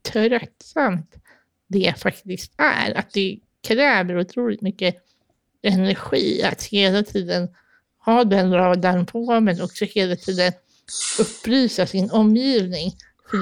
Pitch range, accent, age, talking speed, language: 180-220 Hz, native, 50-69, 110 wpm, Swedish